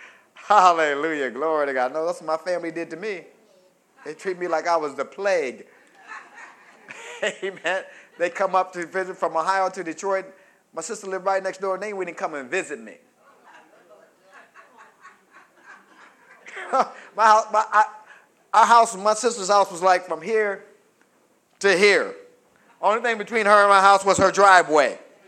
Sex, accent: male, American